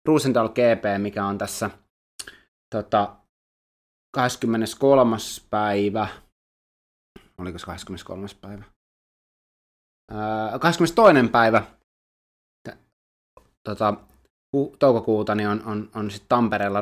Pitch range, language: 100-125 Hz, Finnish